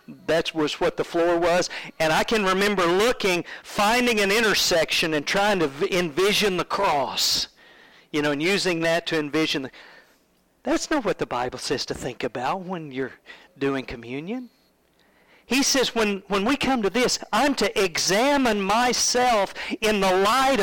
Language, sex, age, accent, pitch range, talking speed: English, male, 50-69, American, 135-195 Hz, 160 wpm